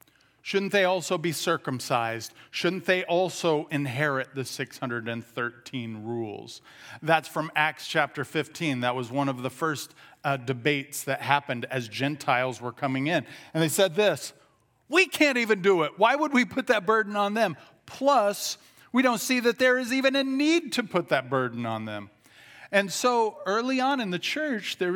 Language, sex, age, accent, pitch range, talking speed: English, male, 40-59, American, 135-205 Hz, 175 wpm